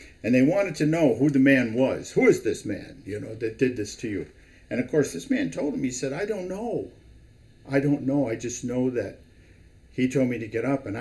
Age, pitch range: 50-69, 110-150 Hz